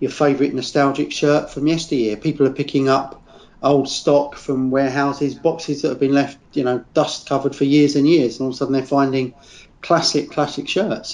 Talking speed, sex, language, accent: 200 wpm, male, English, British